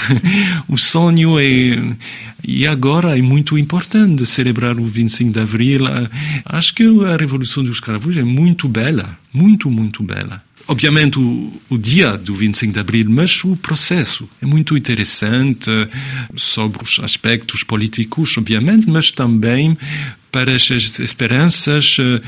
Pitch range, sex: 115-150 Hz, male